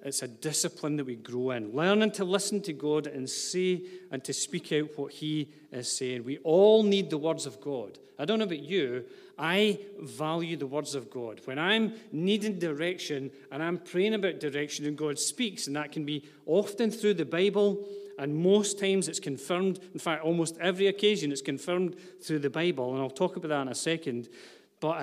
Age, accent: 40-59, British